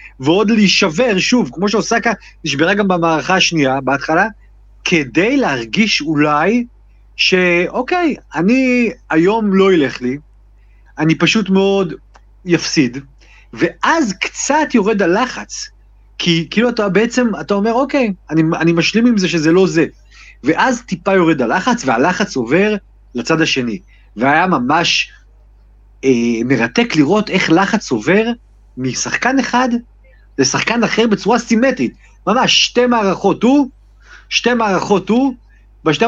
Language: Hebrew